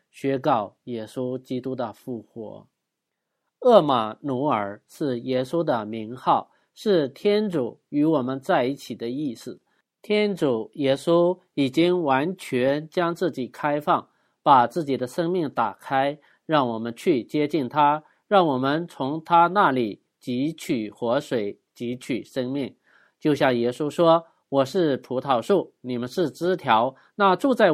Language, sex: Chinese, male